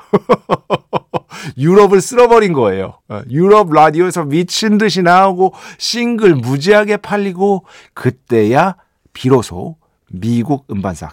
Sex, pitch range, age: male, 110-170 Hz, 50-69